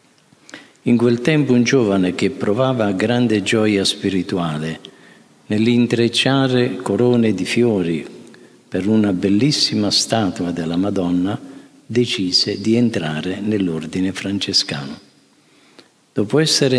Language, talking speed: Italian, 95 wpm